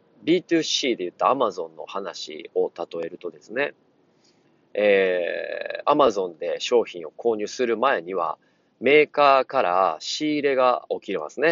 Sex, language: male, Japanese